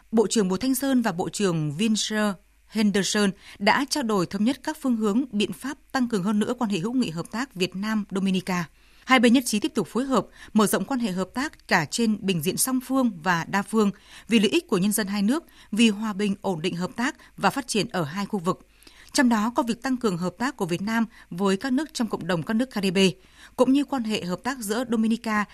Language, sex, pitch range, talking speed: English, female, 195-245 Hz, 260 wpm